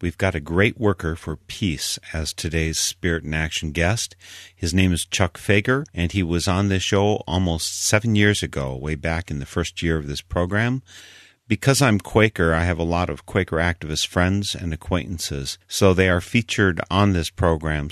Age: 50-69